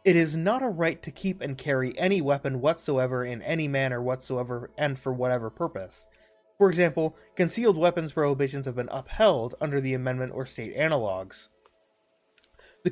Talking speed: 165 wpm